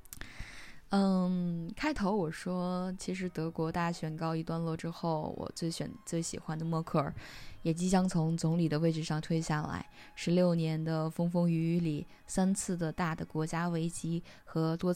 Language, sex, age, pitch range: Chinese, female, 20-39, 165-195 Hz